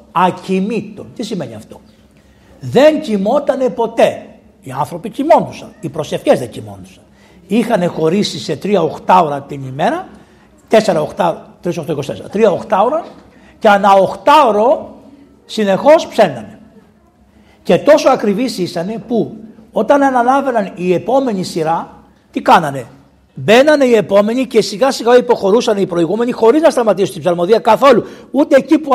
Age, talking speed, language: 60-79, 125 wpm, Greek